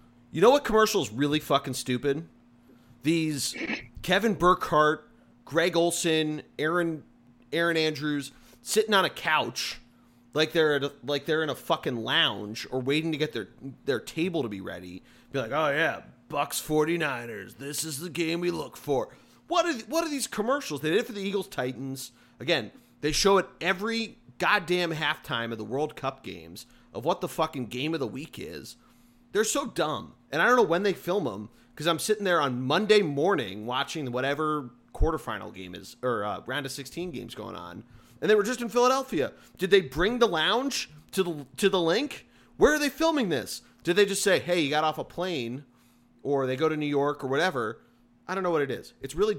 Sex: male